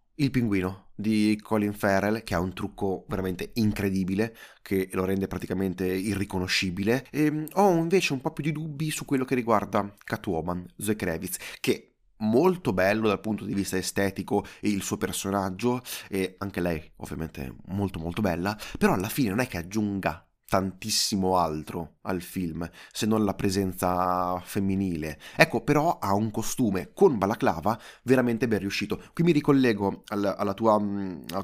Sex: male